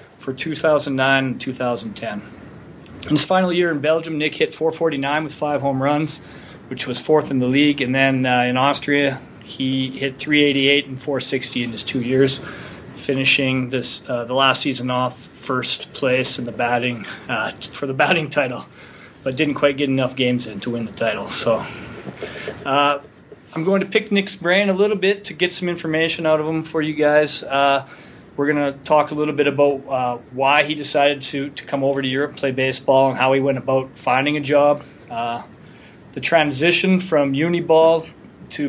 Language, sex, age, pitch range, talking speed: English, male, 30-49, 130-155 Hz, 190 wpm